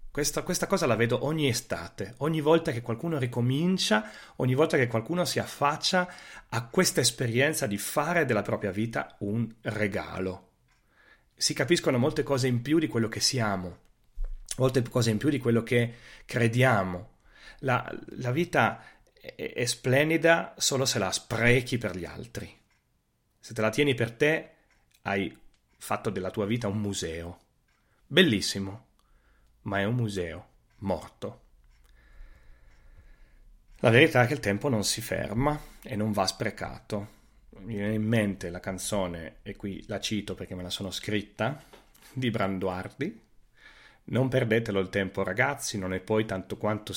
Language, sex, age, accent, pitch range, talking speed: Italian, male, 40-59, native, 95-130 Hz, 150 wpm